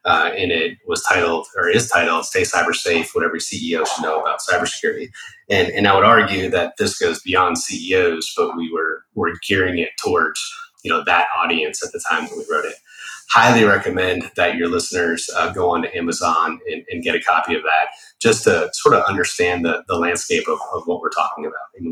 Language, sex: English, male